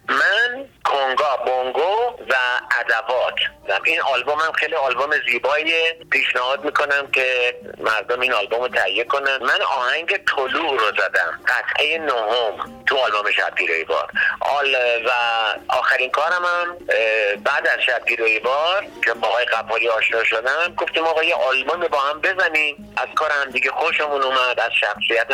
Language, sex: Persian, male